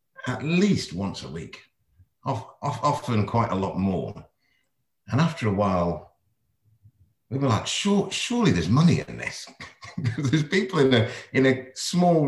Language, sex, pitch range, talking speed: English, male, 95-140 Hz, 145 wpm